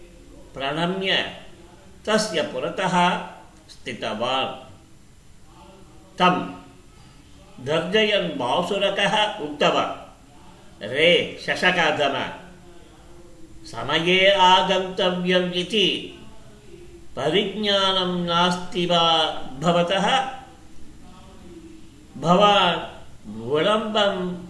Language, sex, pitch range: Tamil, male, 160-200 Hz